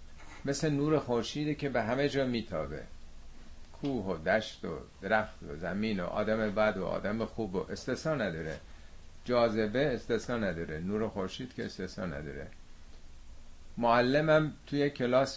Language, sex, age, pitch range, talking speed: Persian, male, 50-69, 80-125 Hz, 135 wpm